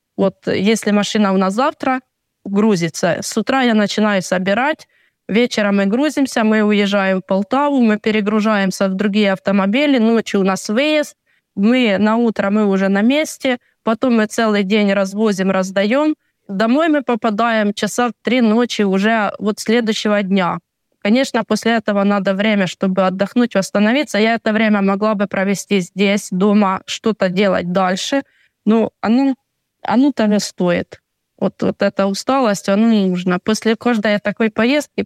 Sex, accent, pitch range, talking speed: female, native, 195-240 Hz, 145 wpm